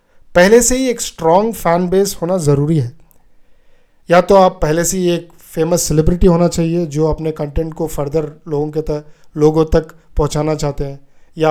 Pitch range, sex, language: 155-195 Hz, male, Hindi